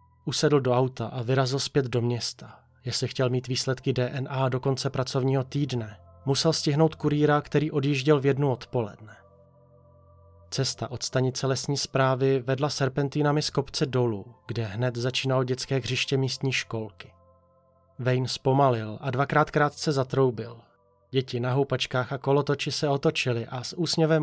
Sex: male